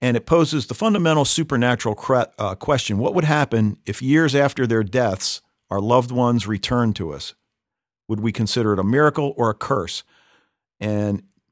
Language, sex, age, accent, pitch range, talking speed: English, male, 50-69, American, 105-125 Hz, 160 wpm